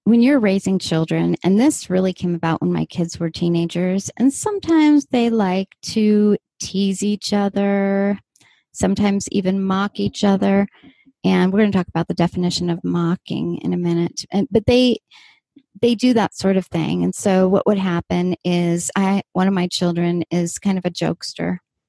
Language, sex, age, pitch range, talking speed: English, female, 30-49, 180-225 Hz, 175 wpm